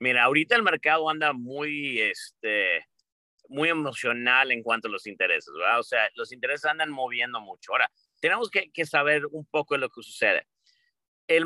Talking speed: 180 wpm